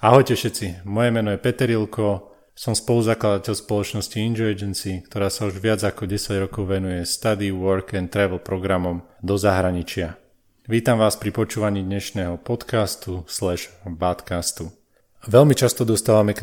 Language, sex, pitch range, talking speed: Slovak, male, 95-110 Hz, 140 wpm